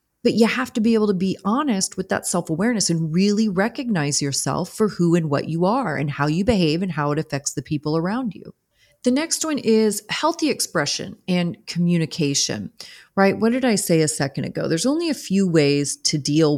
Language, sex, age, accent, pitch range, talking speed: English, female, 30-49, American, 150-215 Hz, 205 wpm